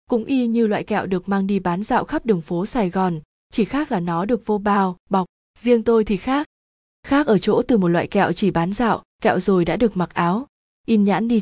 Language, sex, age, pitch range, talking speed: Vietnamese, female, 20-39, 185-225 Hz, 240 wpm